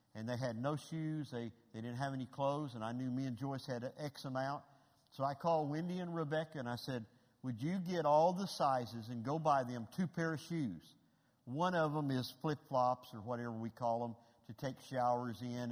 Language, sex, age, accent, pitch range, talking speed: English, male, 50-69, American, 115-140 Hz, 220 wpm